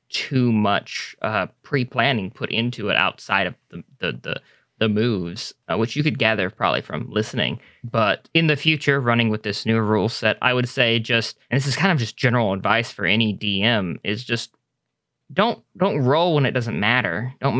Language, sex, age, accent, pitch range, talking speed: English, male, 20-39, American, 115-145 Hz, 195 wpm